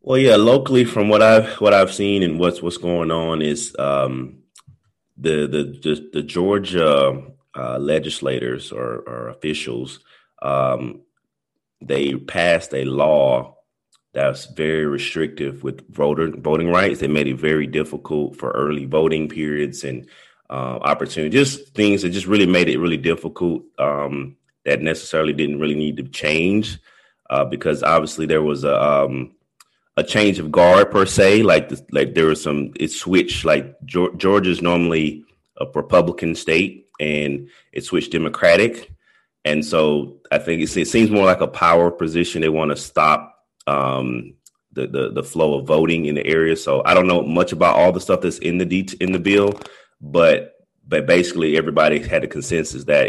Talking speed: 165 wpm